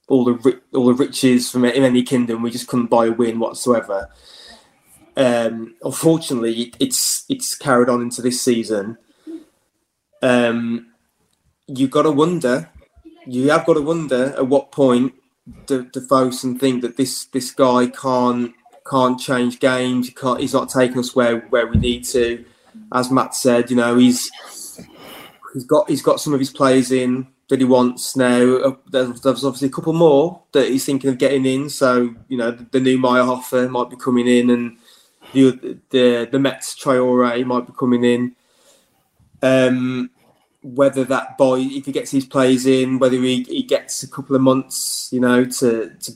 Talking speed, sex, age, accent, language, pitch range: 180 wpm, male, 20-39, British, English, 125-135 Hz